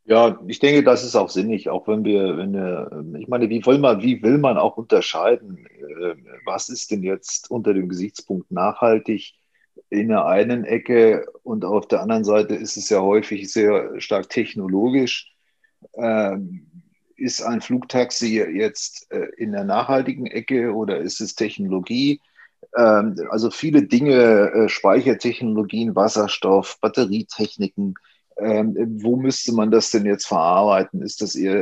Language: German